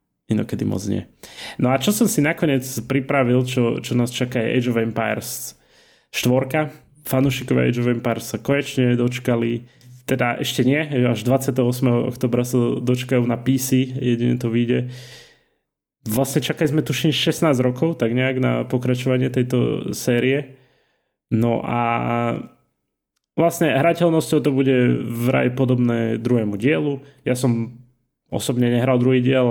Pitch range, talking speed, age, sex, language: 115-135 Hz, 135 wpm, 20-39, male, Slovak